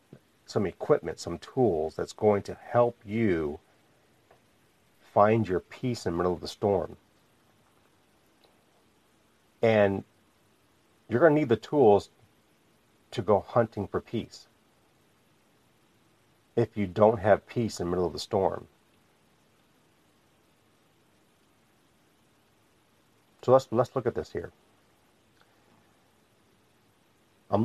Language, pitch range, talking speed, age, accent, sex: English, 95-115 Hz, 105 wpm, 50-69, American, male